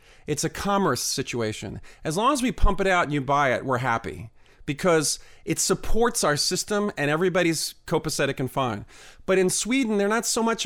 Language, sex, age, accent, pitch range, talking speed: English, male, 40-59, American, 145-205 Hz, 190 wpm